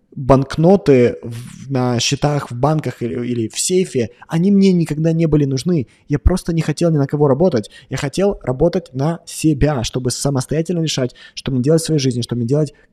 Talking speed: 185 wpm